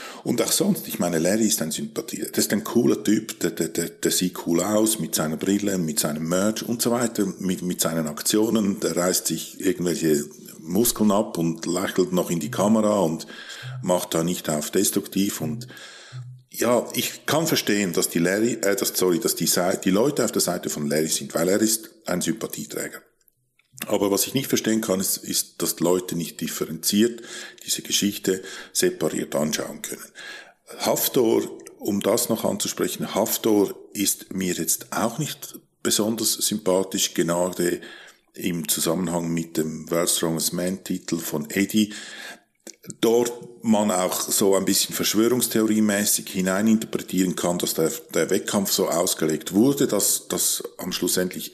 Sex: male